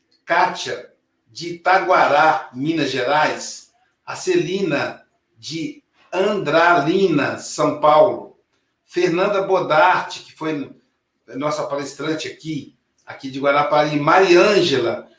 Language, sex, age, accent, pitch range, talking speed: Portuguese, male, 60-79, Brazilian, 145-190 Hz, 85 wpm